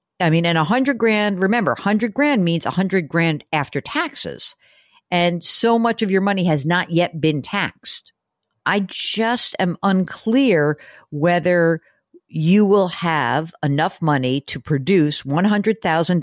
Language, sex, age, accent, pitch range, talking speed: English, female, 50-69, American, 155-205 Hz, 150 wpm